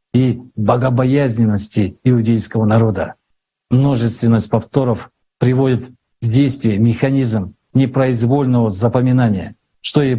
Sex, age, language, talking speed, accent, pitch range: male, 50-69, Russian, 80 wpm, native, 110-135 Hz